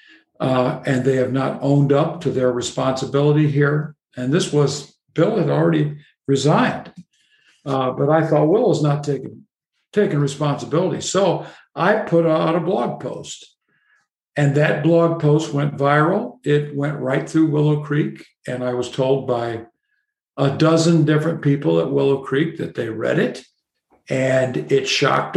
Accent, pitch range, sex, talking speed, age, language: American, 135-170 Hz, male, 155 wpm, 60-79, English